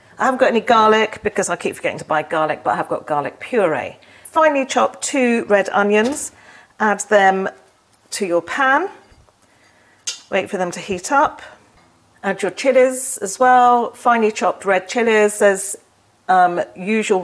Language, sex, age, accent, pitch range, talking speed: English, female, 40-59, British, 190-270 Hz, 155 wpm